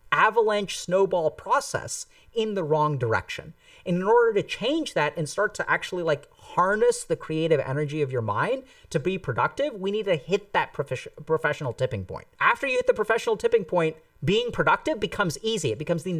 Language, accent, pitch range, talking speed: English, American, 155-235 Hz, 190 wpm